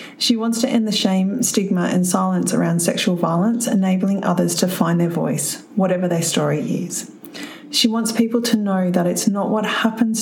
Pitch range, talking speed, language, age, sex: 175-220 Hz, 190 wpm, English, 40-59, female